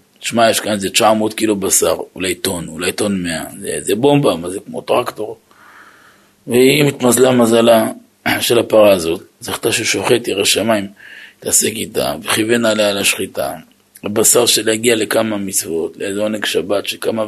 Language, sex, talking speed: Hebrew, male, 145 wpm